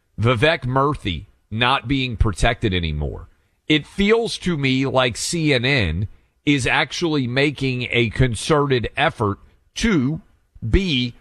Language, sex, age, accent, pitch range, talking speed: English, male, 40-59, American, 110-155 Hz, 105 wpm